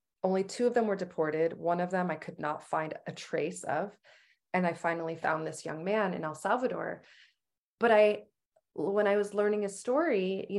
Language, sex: English, female